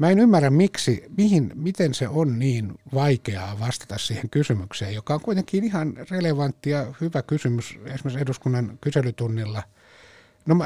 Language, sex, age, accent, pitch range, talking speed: Finnish, male, 60-79, native, 120-160 Hz, 140 wpm